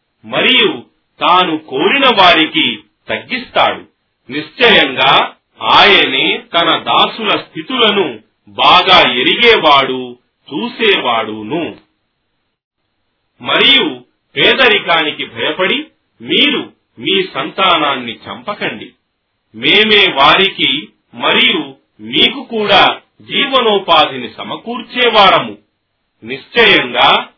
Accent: native